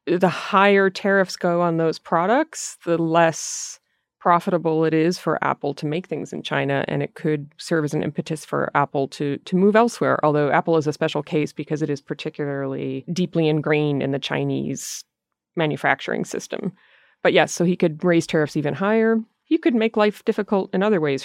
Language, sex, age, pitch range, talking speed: English, female, 30-49, 150-180 Hz, 185 wpm